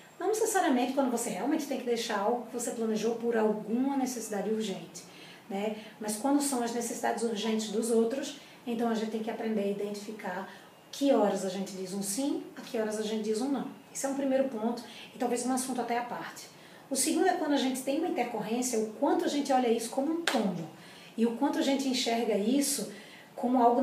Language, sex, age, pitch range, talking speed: Portuguese, female, 20-39, 215-265 Hz, 220 wpm